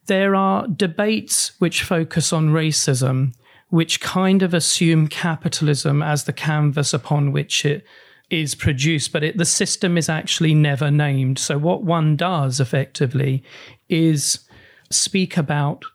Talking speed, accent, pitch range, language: 135 wpm, British, 145-170 Hz, English